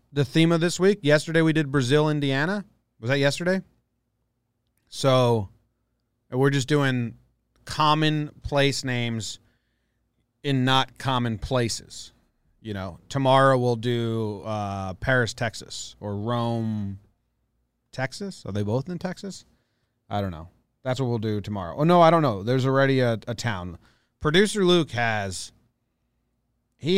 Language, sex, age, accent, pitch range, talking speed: English, male, 30-49, American, 110-150 Hz, 140 wpm